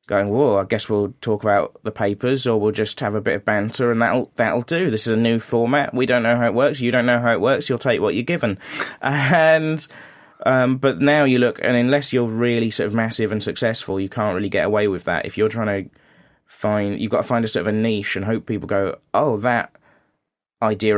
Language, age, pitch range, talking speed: English, 20-39, 100-120 Hz, 245 wpm